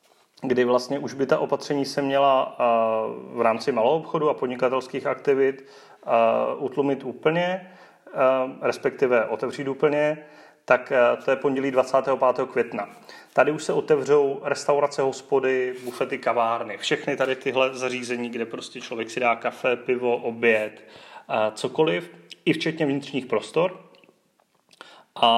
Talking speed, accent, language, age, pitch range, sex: 125 wpm, native, Czech, 30-49, 125-150 Hz, male